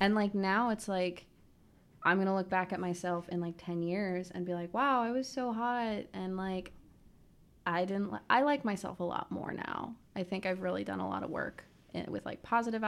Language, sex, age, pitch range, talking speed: English, female, 20-39, 175-205 Hz, 220 wpm